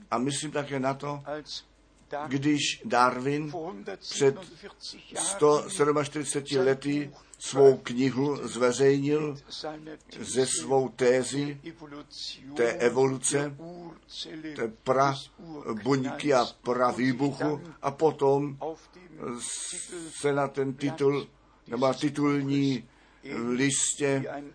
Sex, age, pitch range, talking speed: male, 60-79, 130-150 Hz, 80 wpm